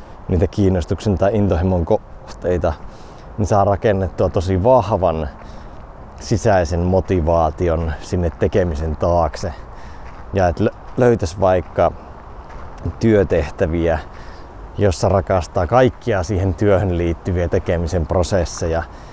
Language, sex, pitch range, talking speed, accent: Finnish, male, 85-105 Hz, 85 wpm, native